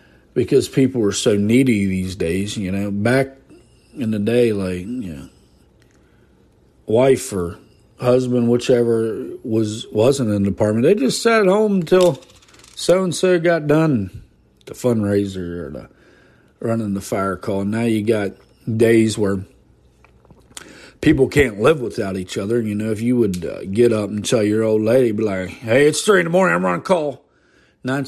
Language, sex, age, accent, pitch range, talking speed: English, male, 40-59, American, 100-135 Hz, 170 wpm